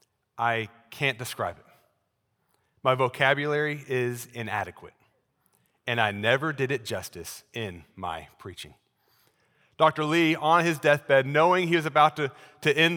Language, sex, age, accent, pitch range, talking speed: English, male, 30-49, American, 125-150 Hz, 135 wpm